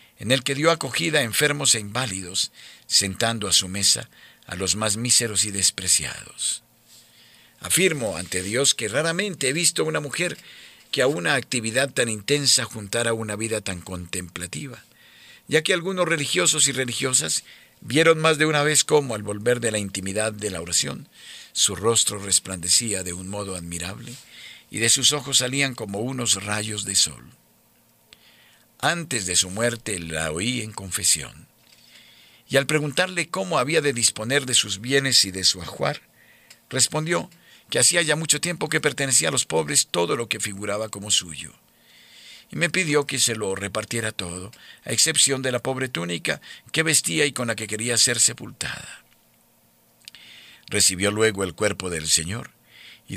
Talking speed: 165 wpm